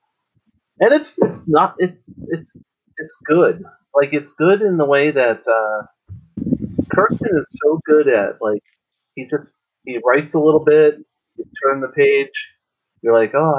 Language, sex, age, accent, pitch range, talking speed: English, male, 30-49, American, 110-160 Hz, 160 wpm